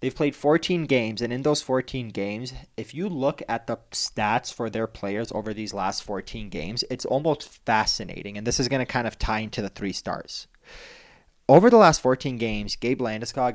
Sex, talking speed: male, 200 wpm